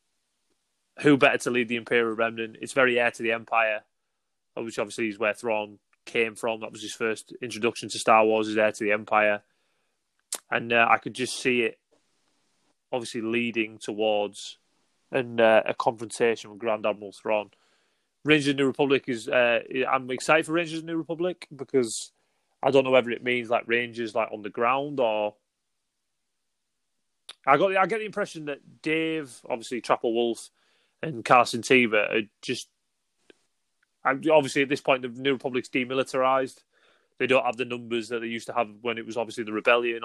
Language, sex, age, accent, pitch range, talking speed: English, male, 20-39, British, 115-130 Hz, 180 wpm